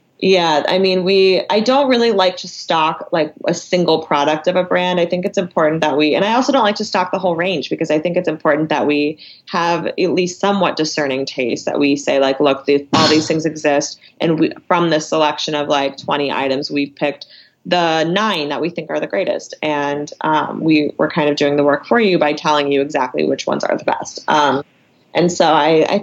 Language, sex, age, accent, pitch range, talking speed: English, female, 20-39, American, 145-175 Hz, 230 wpm